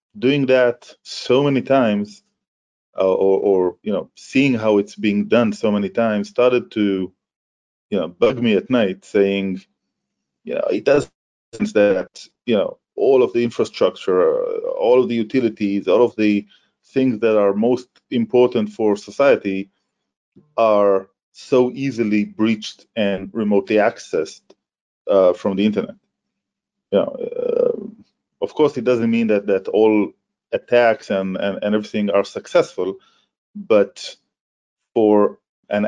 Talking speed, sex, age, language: 140 wpm, male, 30-49, English